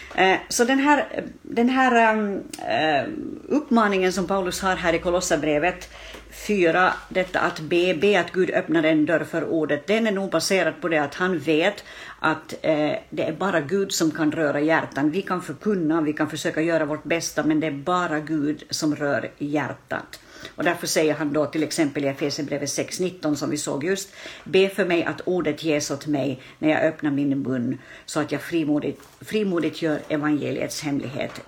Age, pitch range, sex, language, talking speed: 60-79, 155-195 Hz, female, Swedish, 180 wpm